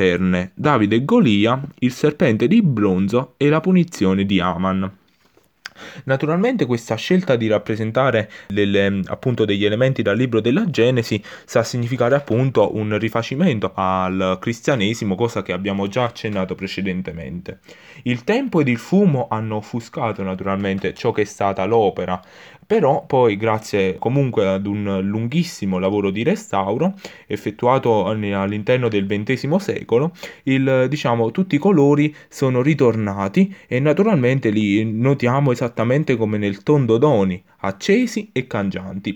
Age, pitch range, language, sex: 20-39, 100-140 Hz, Italian, male